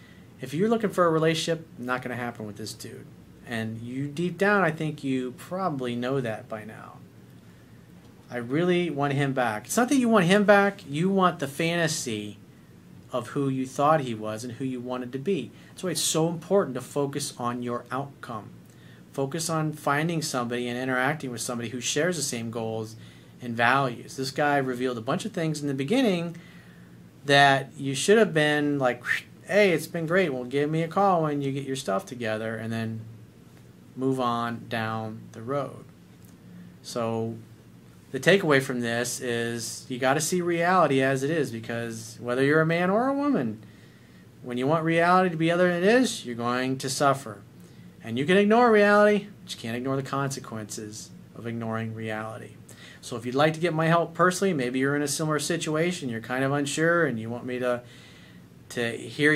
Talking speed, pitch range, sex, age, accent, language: 195 wpm, 115-160 Hz, male, 40-59, American, English